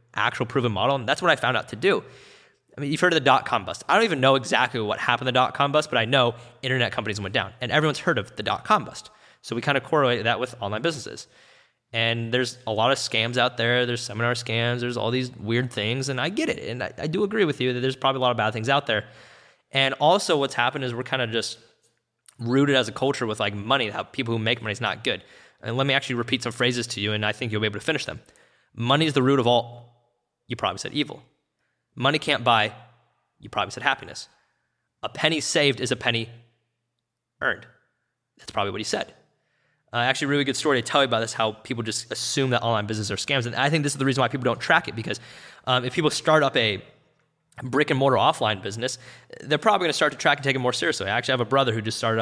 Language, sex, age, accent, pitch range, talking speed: English, male, 20-39, American, 115-135 Hz, 260 wpm